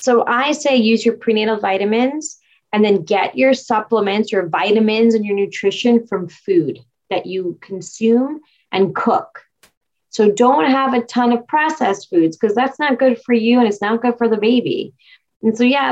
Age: 30-49